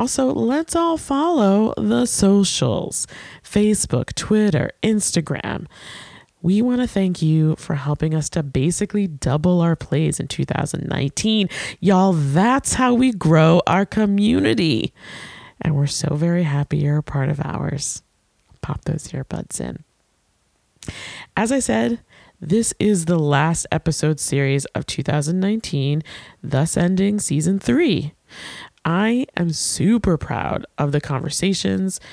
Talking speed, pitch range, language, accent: 125 wpm, 145-205 Hz, English, American